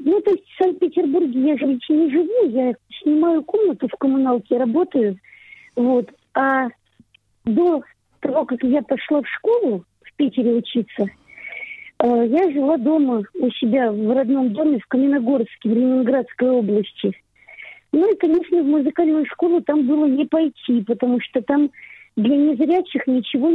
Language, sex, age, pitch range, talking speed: Russian, female, 50-69, 250-320 Hz, 145 wpm